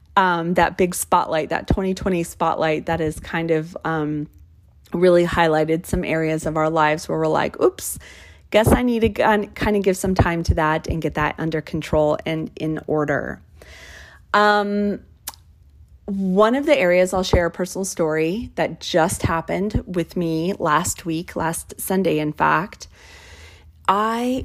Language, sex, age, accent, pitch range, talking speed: English, female, 30-49, American, 155-190 Hz, 155 wpm